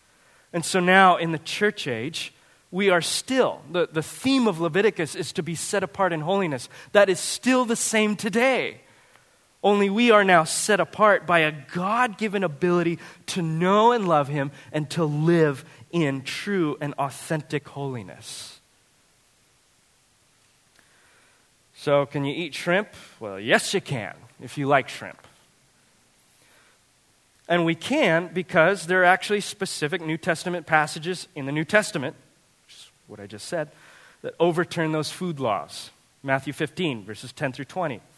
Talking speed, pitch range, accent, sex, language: 150 wpm, 140-185 Hz, American, male, English